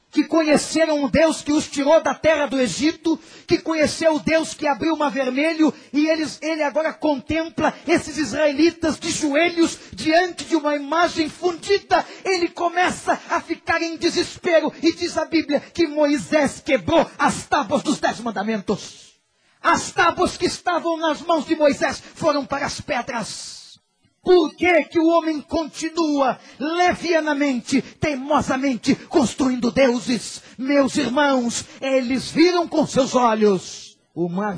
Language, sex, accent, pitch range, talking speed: Portuguese, male, Brazilian, 205-320 Hz, 140 wpm